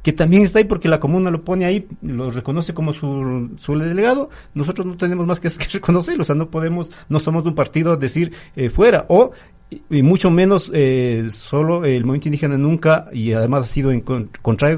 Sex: male